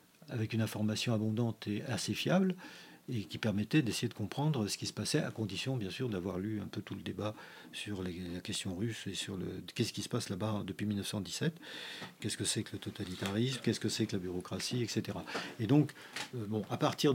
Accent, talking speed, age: French, 215 wpm, 50-69